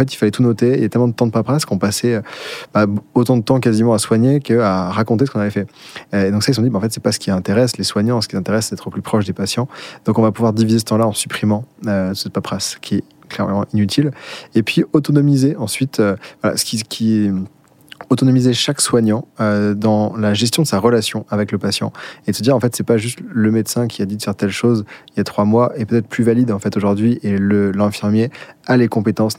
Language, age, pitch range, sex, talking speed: French, 20-39, 105-120 Hz, male, 260 wpm